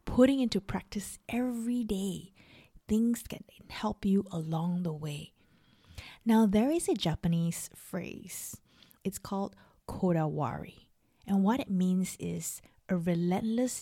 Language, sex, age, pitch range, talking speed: English, female, 20-39, 180-245 Hz, 120 wpm